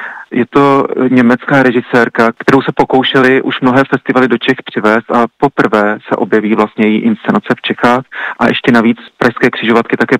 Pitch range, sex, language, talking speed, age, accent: 110-125 Hz, male, Czech, 165 wpm, 40-59, native